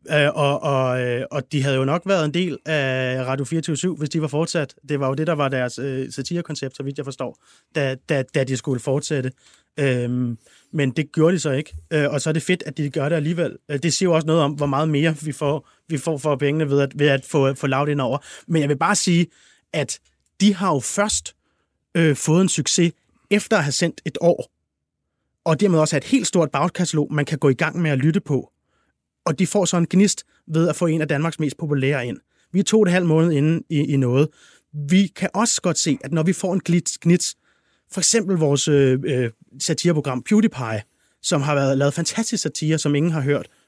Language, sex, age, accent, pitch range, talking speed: Danish, male, 30-49, native, 135-170 Hz, 230 wpm